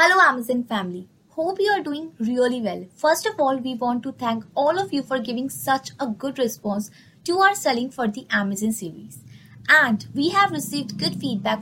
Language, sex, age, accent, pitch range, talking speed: English, female, 20-39, Indian, 215-295 Hz, 195 wpm